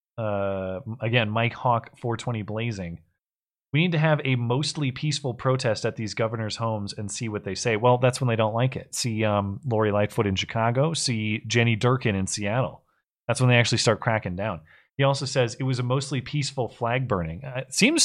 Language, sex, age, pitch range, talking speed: English, male, 30-49, 100-130 Hz, 205 wpm